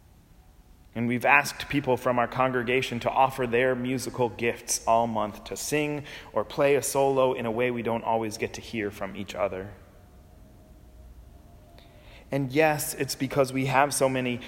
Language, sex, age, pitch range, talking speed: English, male, 30-49, 90-125 Hz, 165 wpm